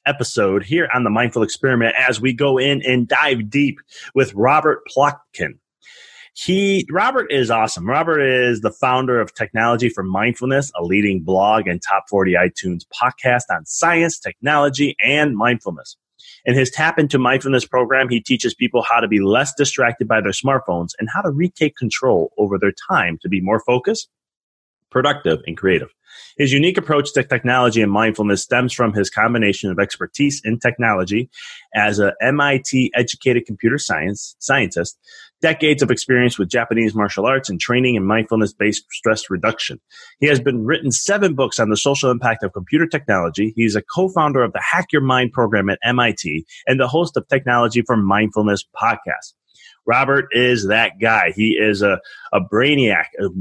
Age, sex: 30-49, male